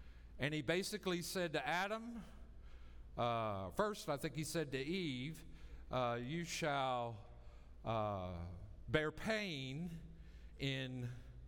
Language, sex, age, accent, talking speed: English, male, 50-69, American, 110 wpm